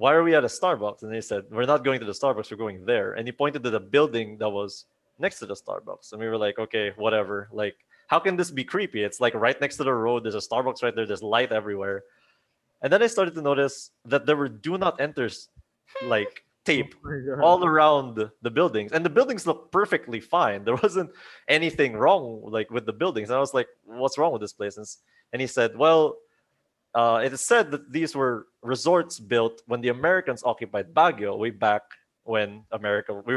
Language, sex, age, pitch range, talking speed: English, male, 20-39, 110-145 Hz, 220 wpm